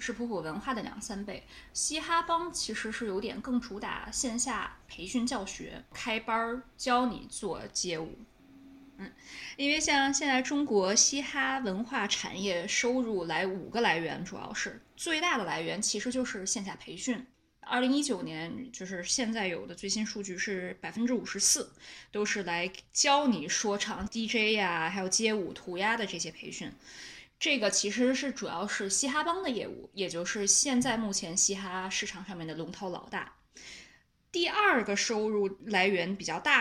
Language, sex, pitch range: Chinese, female, 200-255 Hz